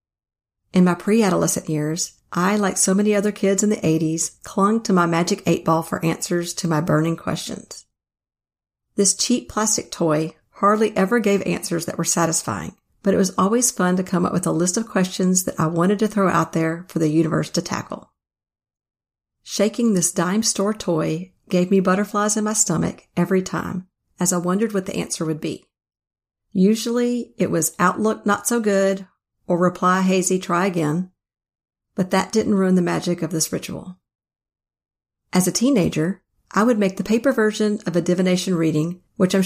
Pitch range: 170-210 Hz